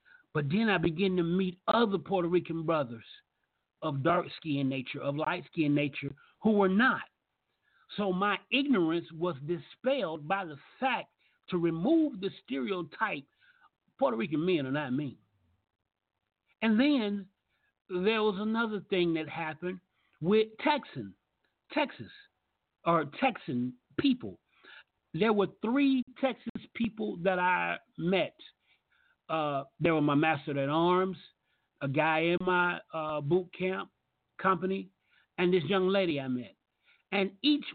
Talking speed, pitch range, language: 135 wpm, 155-230 Hz, English